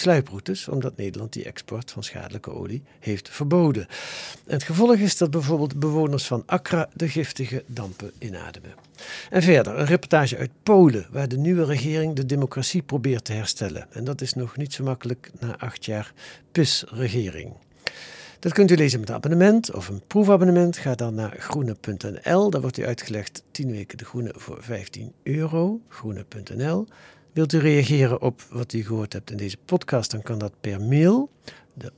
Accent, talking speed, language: Dutch, 175 wpm, Dutch